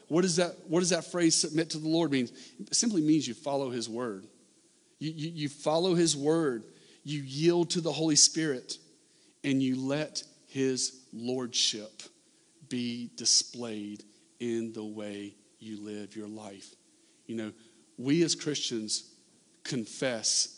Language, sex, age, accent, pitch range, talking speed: English, male, 40-59, American, 115-150 Hz, 145 wpm